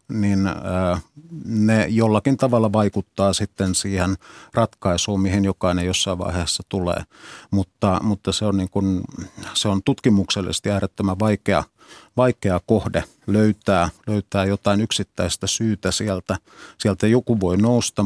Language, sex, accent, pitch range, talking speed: Finnish, male, native, 95-110 Hz, 110 wpm